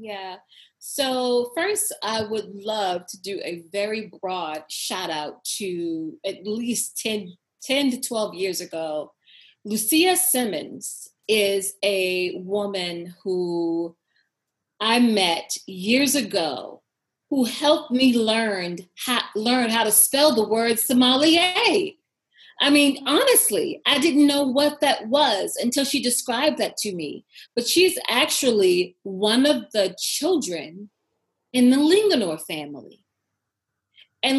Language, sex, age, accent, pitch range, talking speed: English, female, 30-49, American, 185-260 Hz, 120 wpm